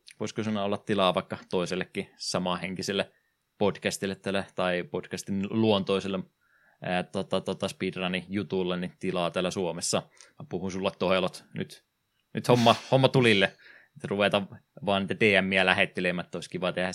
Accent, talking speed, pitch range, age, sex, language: native, 130 wpm, 90-105 Hz, 20-39, male, Finnish